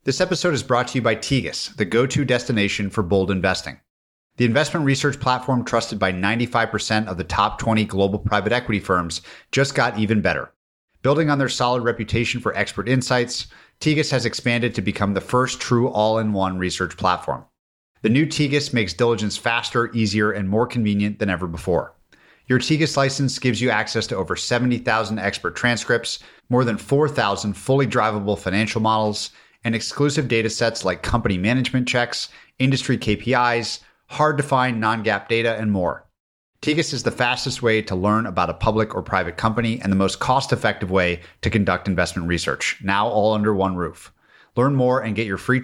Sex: male